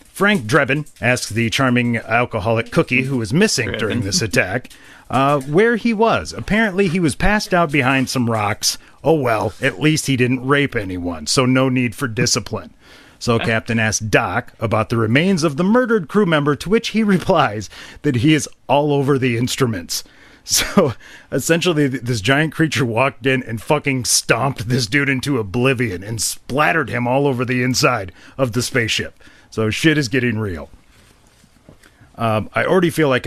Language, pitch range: English, 120-160 Hz